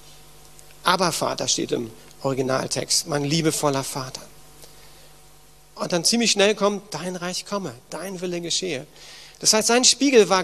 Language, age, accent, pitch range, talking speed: German, 40-59, German, 145-190 Hz, 140 wpm